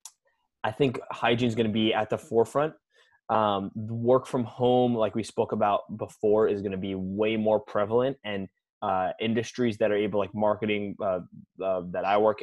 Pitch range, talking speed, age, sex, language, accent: 105-125 Hz, 190 wpm, 20-39, male, English, American